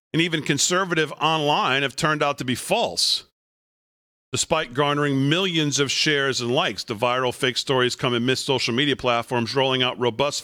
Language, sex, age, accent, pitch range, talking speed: English, male, 40-59, American, 125-150 Hz, 165 wpm